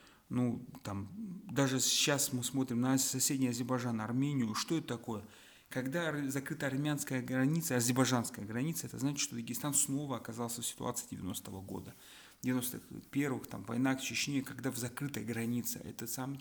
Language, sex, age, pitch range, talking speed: Russian, male, 30-49, 115-140 Hz, 145 wpm